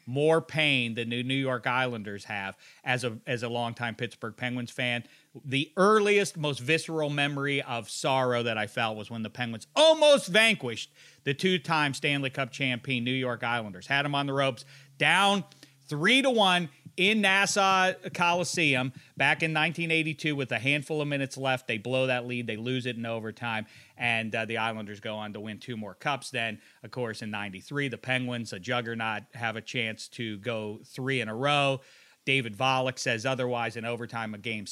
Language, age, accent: English, 40-59, American